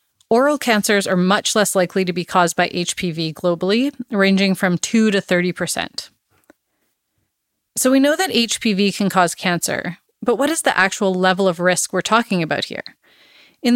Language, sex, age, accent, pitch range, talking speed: English, female, 30-49, American, 180-235 Hz, 165 wpm